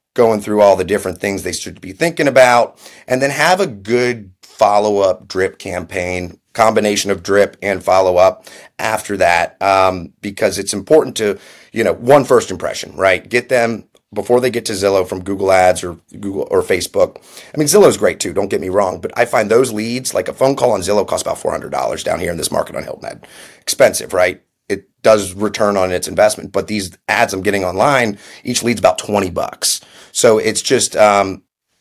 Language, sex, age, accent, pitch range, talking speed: English, male, 30-49, American, 95-120 Hz, 200 wpm